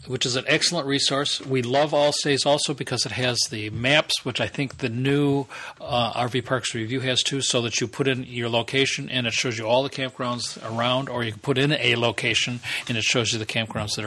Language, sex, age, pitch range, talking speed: English, male, 40-59, 115-145 Hz, 230 wpm